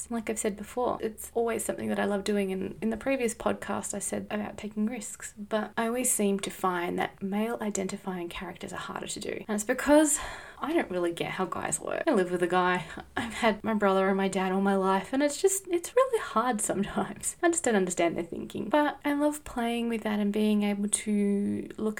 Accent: Australian